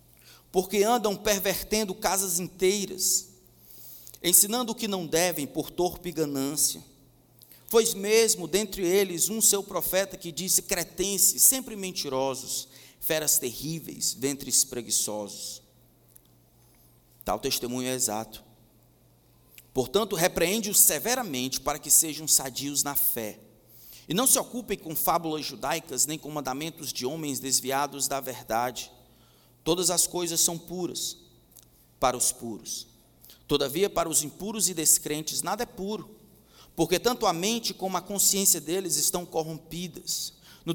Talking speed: 125 wpm